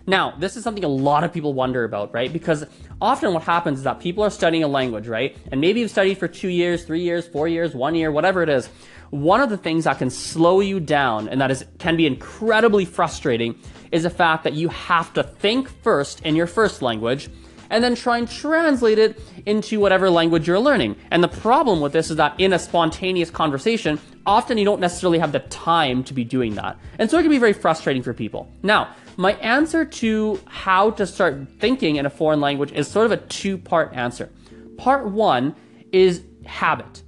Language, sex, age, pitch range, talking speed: English, male, 20-39, 140-200 Hz, 210 wpm